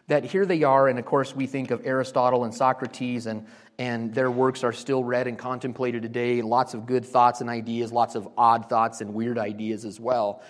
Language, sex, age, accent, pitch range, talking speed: English, male, 30-49, American, 135-185 Hz, 225 wpm